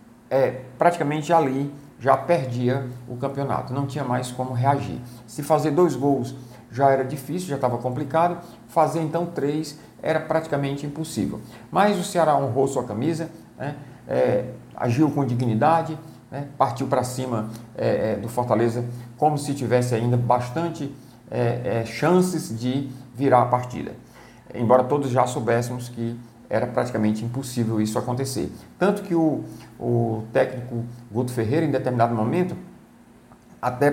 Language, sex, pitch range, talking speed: Portuguese, male, 120-150 Hz, 130 wpm